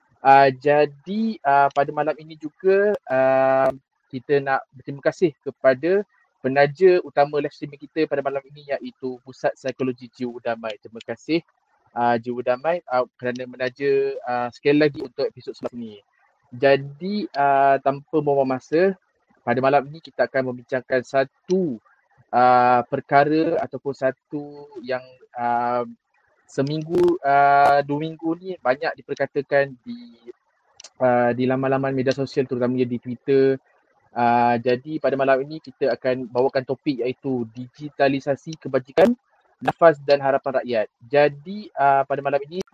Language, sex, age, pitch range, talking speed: Malay, male, 20-39, 125-150 Hz, 135 wpm